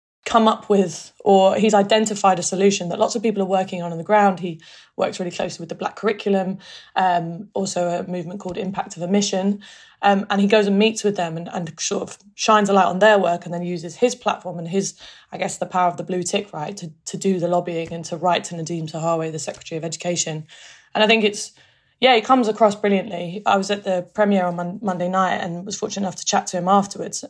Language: English